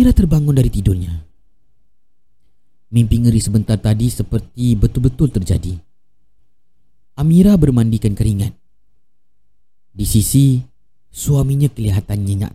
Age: 30-49